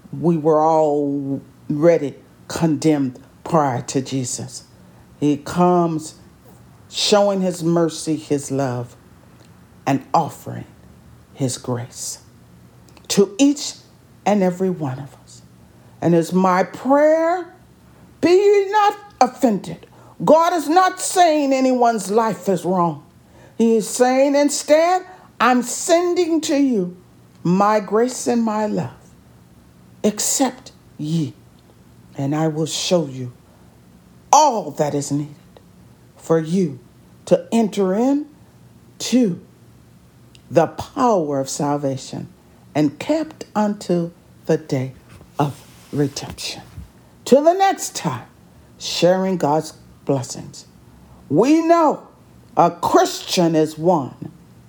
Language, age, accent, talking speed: English, 50-69, American, 105 wpm